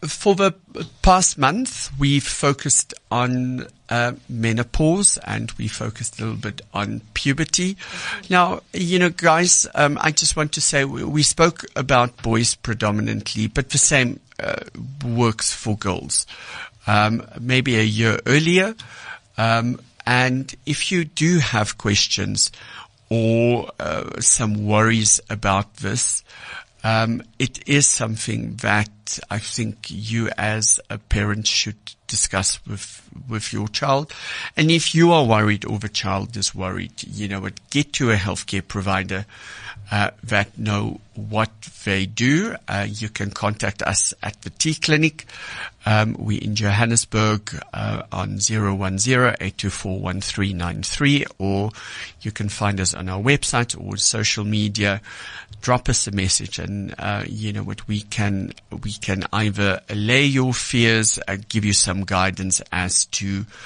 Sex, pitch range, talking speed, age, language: male, 100-135 Hz, 150 wpm, 60-79, English